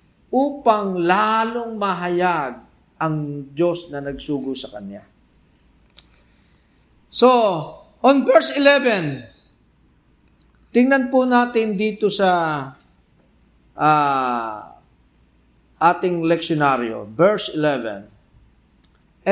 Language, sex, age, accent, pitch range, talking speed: Filipino, male, 50-69, native, 155-245 Hz, 70 wpm